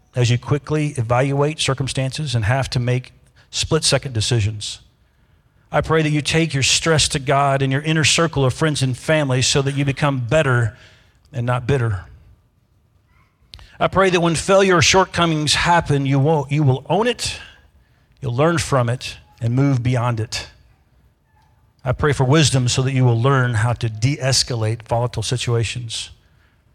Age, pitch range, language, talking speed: 40-59, 120-145 Hz, English, 160 wpm